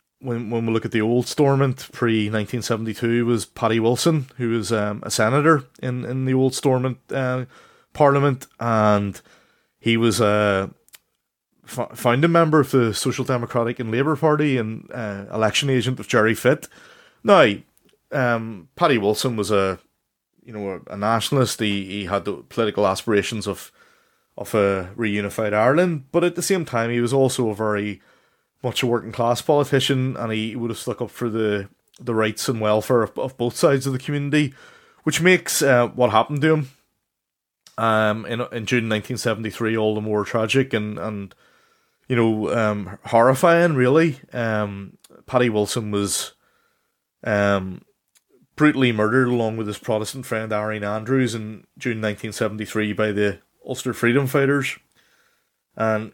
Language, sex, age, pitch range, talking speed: English, male, 30-49, 110-130 Hz, 160 wpm